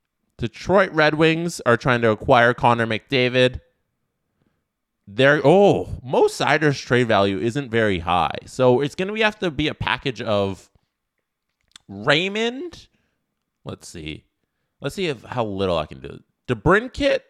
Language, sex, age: English, male, 20-39